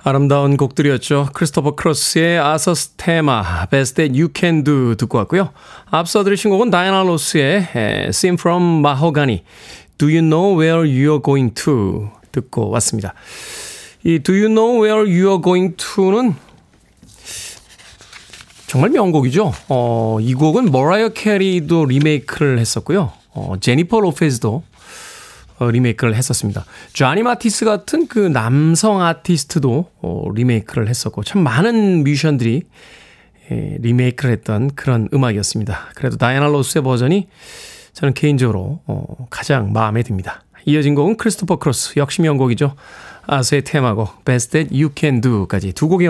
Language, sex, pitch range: Korean, male, 125-190 Hz